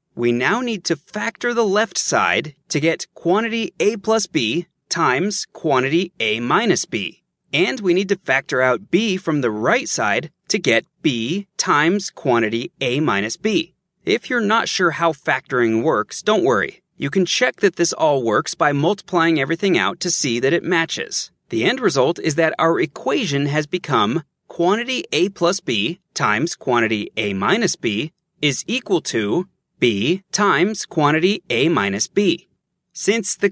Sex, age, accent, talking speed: male, 30-49, American, 165 wpm